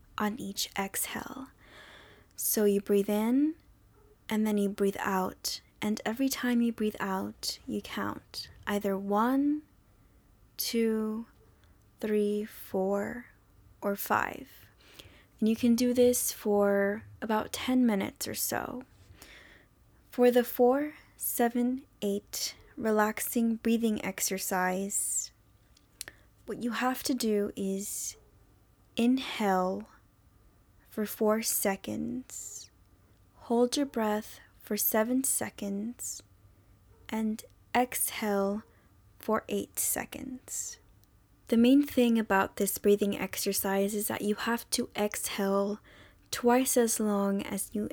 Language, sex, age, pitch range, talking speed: English, female, 10-29, 195-235 Hz, 105 wpm